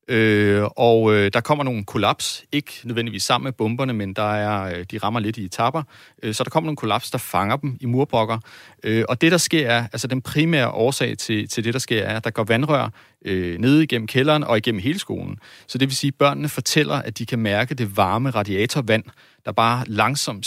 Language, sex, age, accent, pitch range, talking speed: Danish, male, 30-49, native, 110-135 Hz, 225 wpm